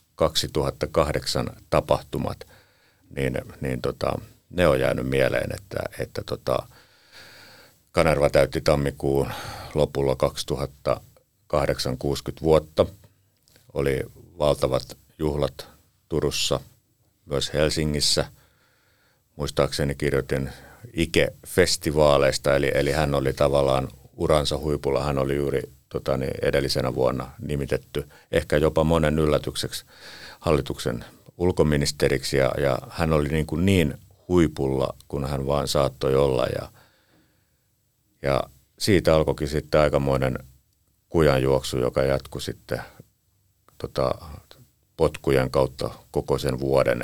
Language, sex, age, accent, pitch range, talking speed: Finnish, male, 50-69, native, 65-75 Hz, 95 wpm